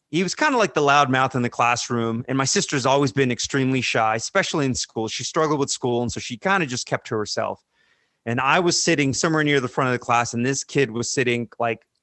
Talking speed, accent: 260 wpm, American